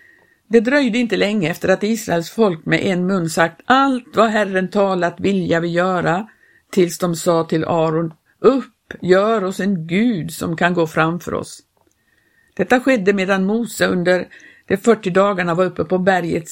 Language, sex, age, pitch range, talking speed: Swedish, female, 60-79, 175-215 Hz, 170 wpm